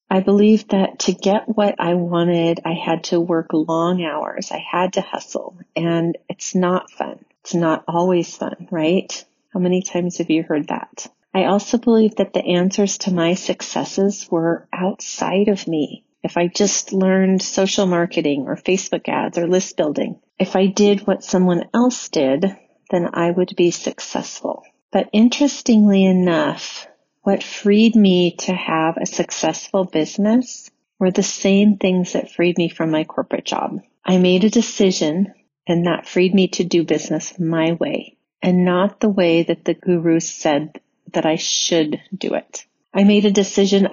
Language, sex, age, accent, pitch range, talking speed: English, female, 40-59, American, 170-200 Hz, 170 wpm